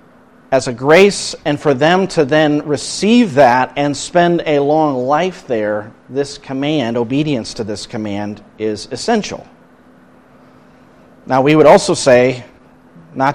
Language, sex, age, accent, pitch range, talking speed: English, male, 40-59, American, 120-145 Hz, 135 wpm